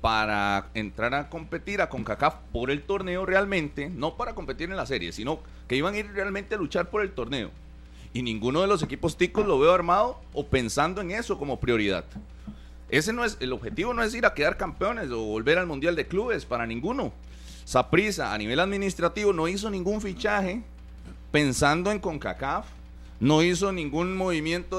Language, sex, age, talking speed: Spanish, male, 30-49, 185 wpm